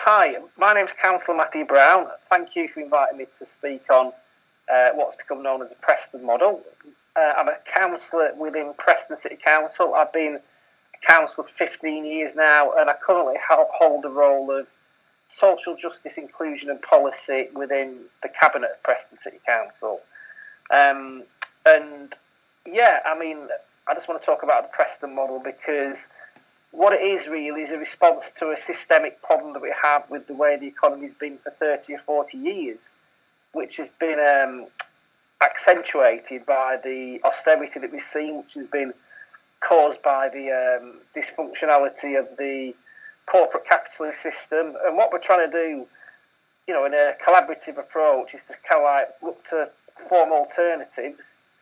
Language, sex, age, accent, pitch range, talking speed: English, male, 30-49, British, 140-170 Hz, 165 wpm